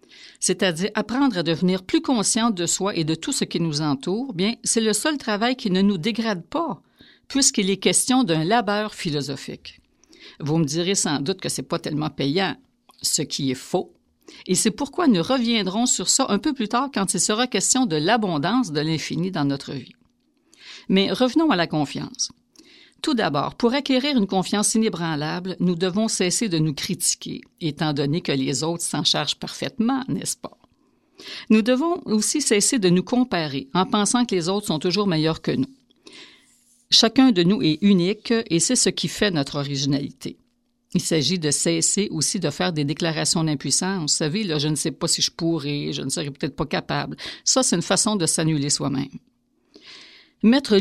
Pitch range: 165-250 Hz